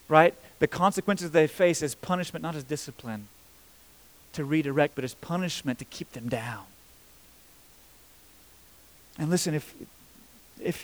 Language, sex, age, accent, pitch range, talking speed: English, male, 30-49, American, 115-155 Hz, 125 wpm